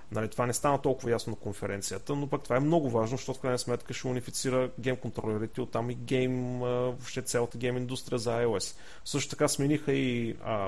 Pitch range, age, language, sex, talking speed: 115-145 Hz, 30-49, Bulgarian, male, 210 wpm